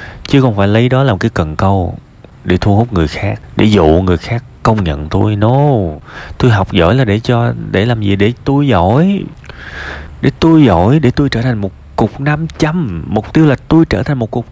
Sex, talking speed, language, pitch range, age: male, 225 wpm, Vietnamese, 90-130 Hz, 20-39